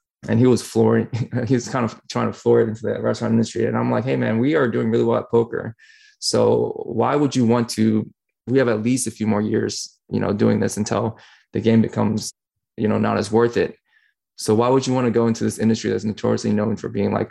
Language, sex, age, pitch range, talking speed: English, male, 20-39, 110-125 Hz, 250 wpm